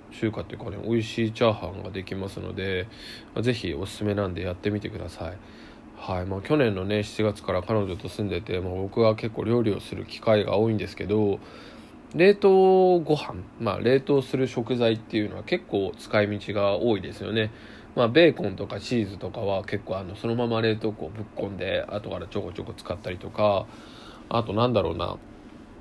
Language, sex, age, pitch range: Japanese, male, 20-39, 100-125 Hz